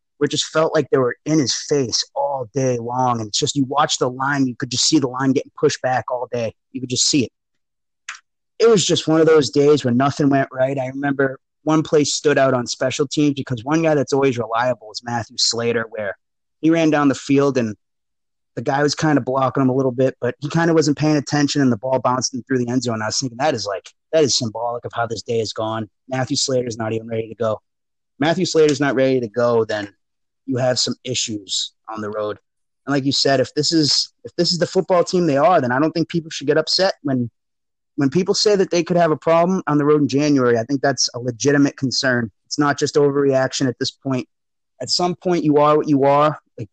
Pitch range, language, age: 125-150 Hz, English, 30-49